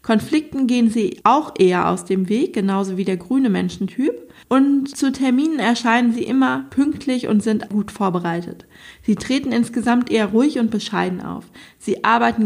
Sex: female